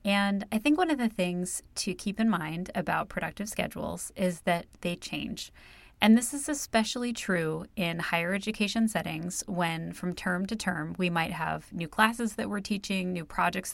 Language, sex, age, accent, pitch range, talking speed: English, female, 30-49, American, 170-210 Hz, 185 wpm